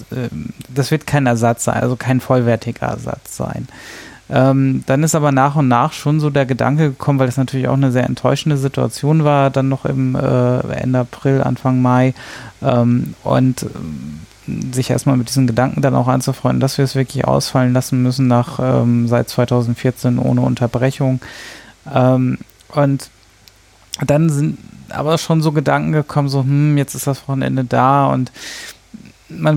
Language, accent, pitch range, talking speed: German, German, 120-135 Hz, 165 wpm